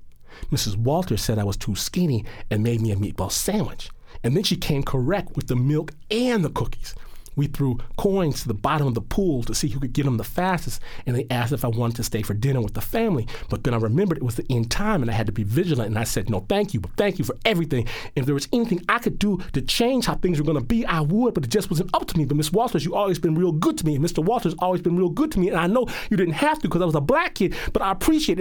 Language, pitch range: English, 110-160 Hz